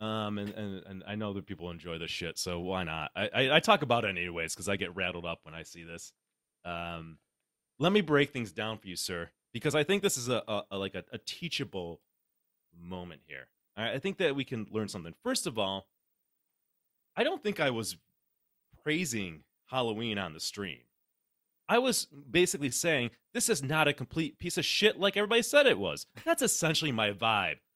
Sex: male